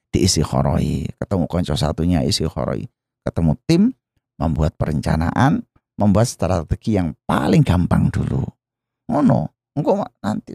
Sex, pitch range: male, 100-130 Hz